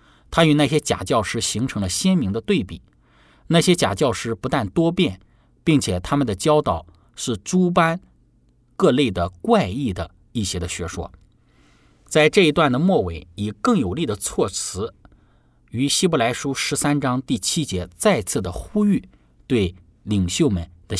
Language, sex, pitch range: Chinese, male, 95-145 Hz